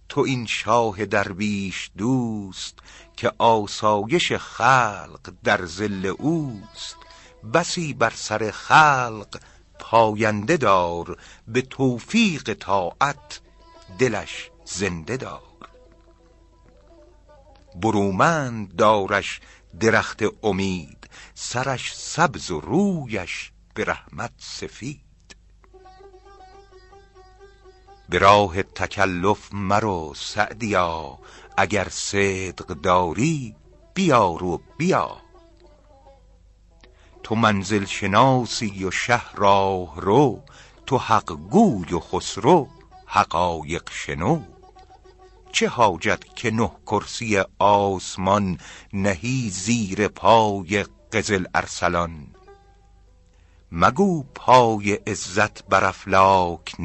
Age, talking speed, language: 50-69, 75 wpm, Persian